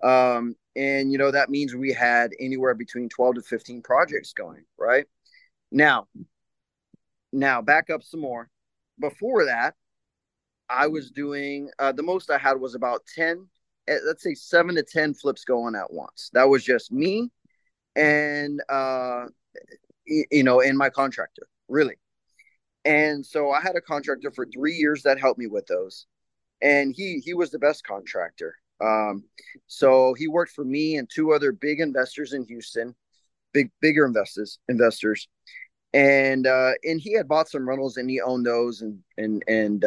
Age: 30-49